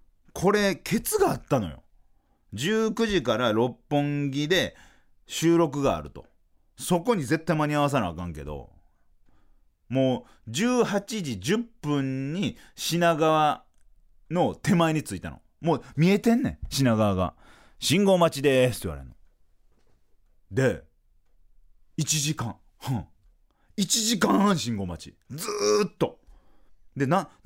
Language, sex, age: Japanese, male, 40-59